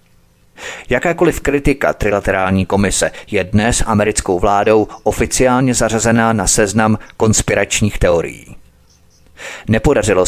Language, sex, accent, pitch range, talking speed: Czech, male, native, 95-120 Hz, 90 wpm